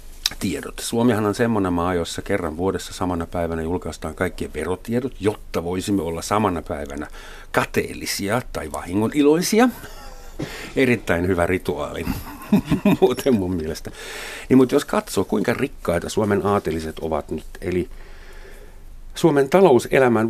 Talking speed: 120 wpm